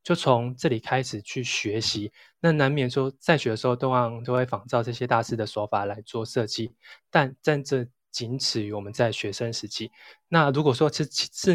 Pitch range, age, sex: 110-140 Hz, 20-39, male